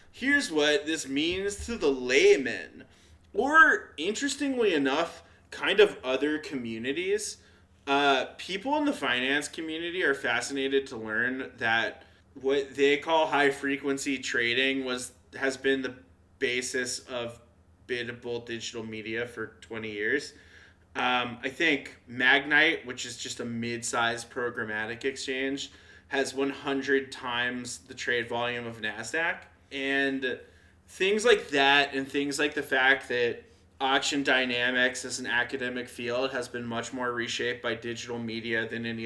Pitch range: 120-150 Hz